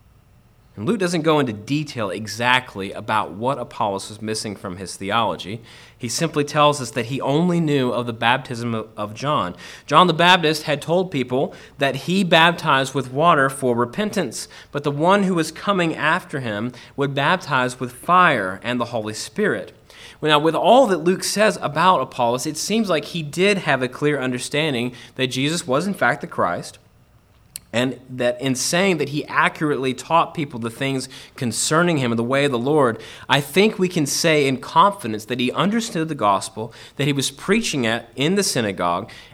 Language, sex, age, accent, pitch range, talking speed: English, male, 30-49, American, 120-170 Hz, 185 wpm